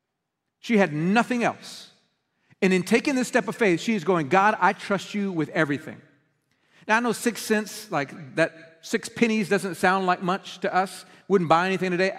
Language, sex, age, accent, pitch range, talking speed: English, male, 40-59, American, 160-215 Hz, 185 wpm